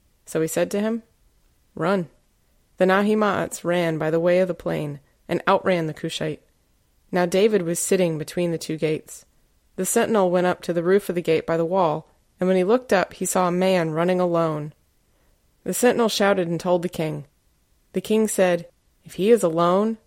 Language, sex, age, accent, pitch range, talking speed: English, female, 20-39, American, 165-195 Hz, 195 wpm